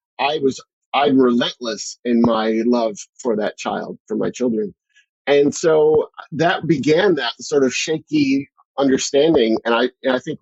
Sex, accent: male, American